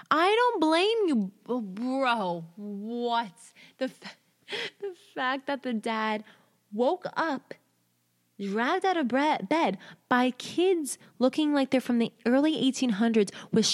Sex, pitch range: female, 185-260 Hz